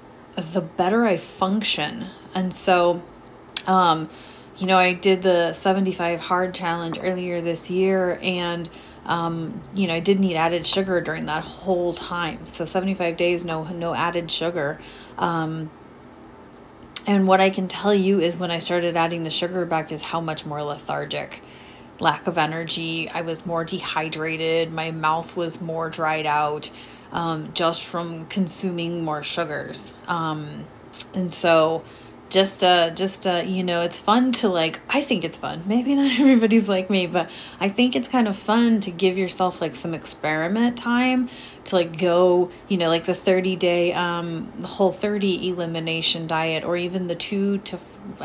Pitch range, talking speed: 165-190 Hz, 165 wpm